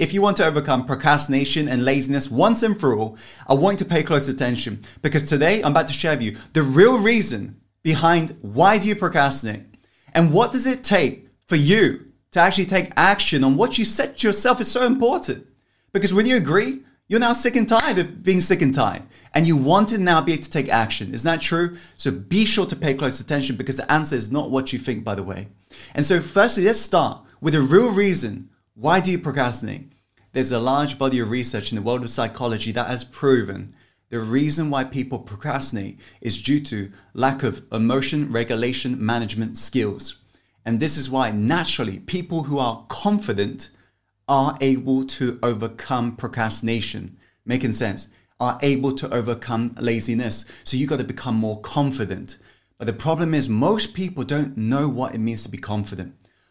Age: 20-39